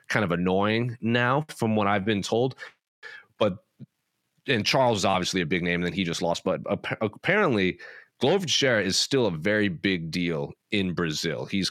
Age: 30-49